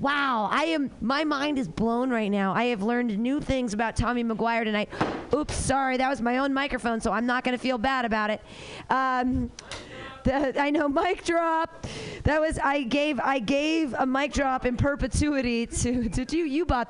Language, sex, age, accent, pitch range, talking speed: English, female, 40-59, American, 240-300 Hz, 200 wpm